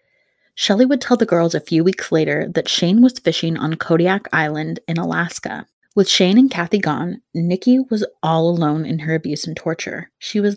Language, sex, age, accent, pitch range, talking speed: English, female, 20-39, American, 165-210 Hz, 195 wpm